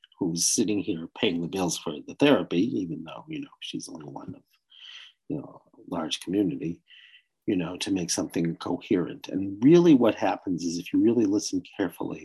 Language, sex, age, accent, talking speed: English, male, 50-69, American, 185 wpm